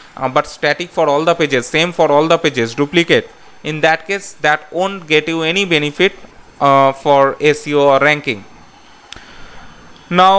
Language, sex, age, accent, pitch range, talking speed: English, male, 20-39, Indian, 145-175 Hz, 160 wpm